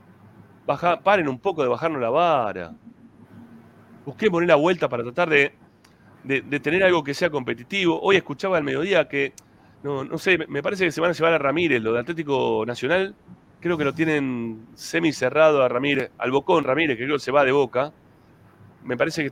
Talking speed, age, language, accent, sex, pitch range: 200 wpm, 30-49, Spanish, Argentinian, male, 115-165 Hz